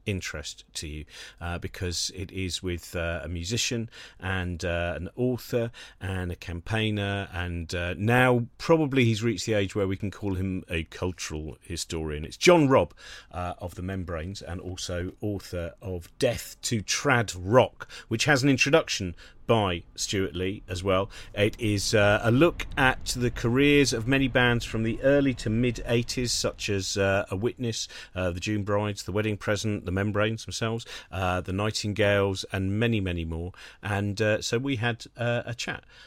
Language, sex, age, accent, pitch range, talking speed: English, male, 40-59, British, 90-115 Hz, 175 wpm